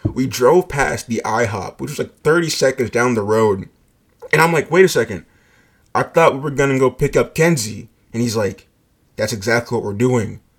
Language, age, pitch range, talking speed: English, 20-39, 115-155 Hz, 210 wpm